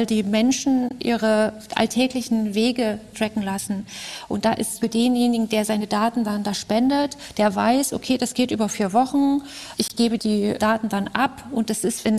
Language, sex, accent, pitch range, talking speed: German, female, German, 215-245 Hz, 175 wpm